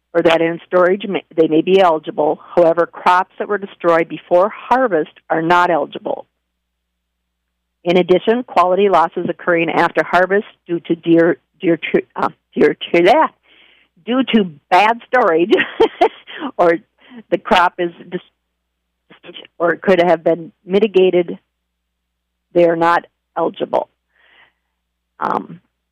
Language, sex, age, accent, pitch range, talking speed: English, female, 50-69, American, 160-190 Hz, 120 wpm